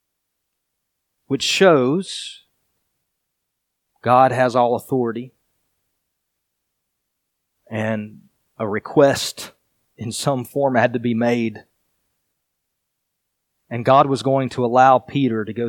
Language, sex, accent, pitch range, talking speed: English, male, American, 110-140 Hz, 95 wpm